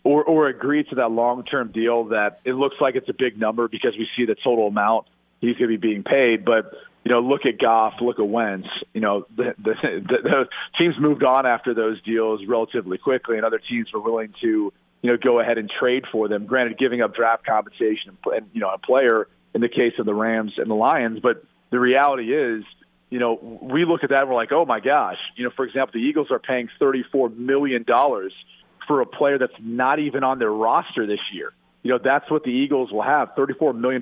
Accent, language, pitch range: American, English, 115-140 Hz